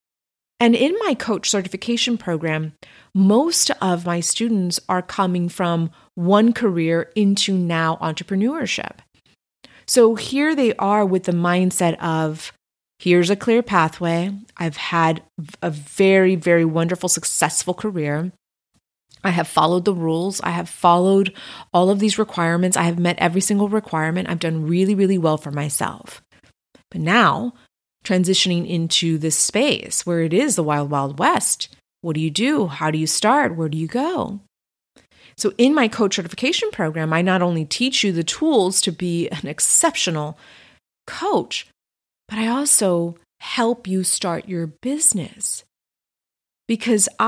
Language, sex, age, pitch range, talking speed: English, female, 30-49, 165-215 Hz, 145 wpm